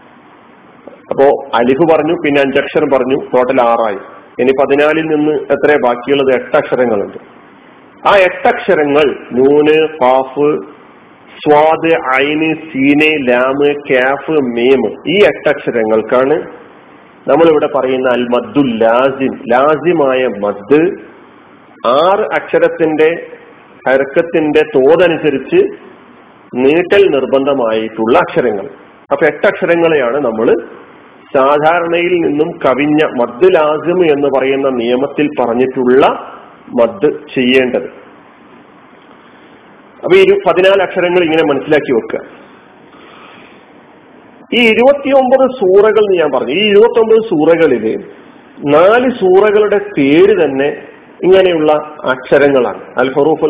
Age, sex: 40-59, male